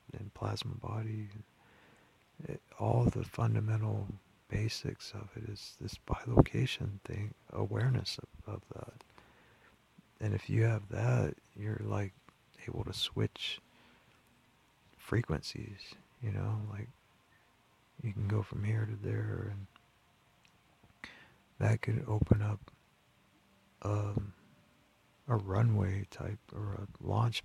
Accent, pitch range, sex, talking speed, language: American, 105-115 Hz, male, 110 wpm, English